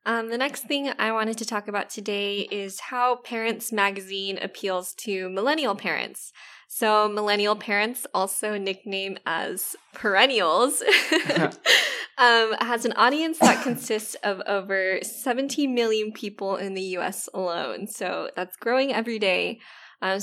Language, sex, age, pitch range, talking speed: English, female, 10-29, 195-240 Hz, 135 wpm